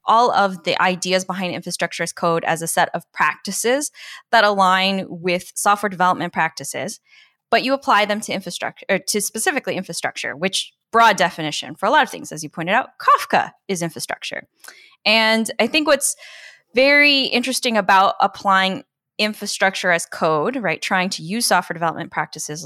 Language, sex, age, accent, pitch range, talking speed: English, female, 10-29, American, 170-225 Hz, 165 wpm